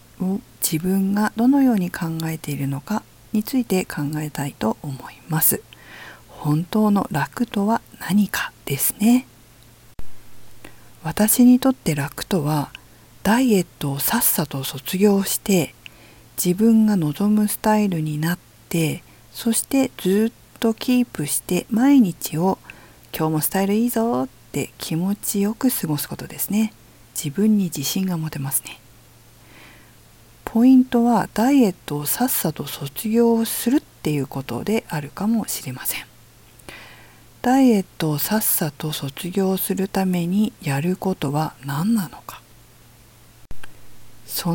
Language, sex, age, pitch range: Japanese, female, 50-69, 135-210 Hz